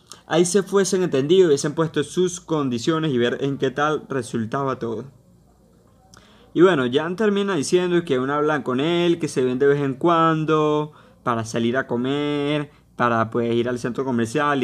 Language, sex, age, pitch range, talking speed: Spanish, male, 20-39, 125-155 Hz, 175 wpm